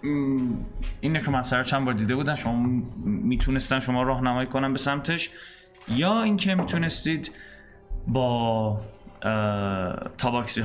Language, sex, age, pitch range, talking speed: Persian, male, 20-39, 110-140 Hz, 115 wpm